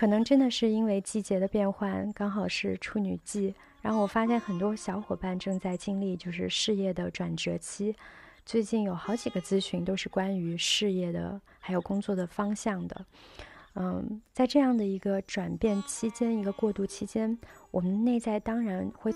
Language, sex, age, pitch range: Chinese, female, 20-39, 185-220 Hz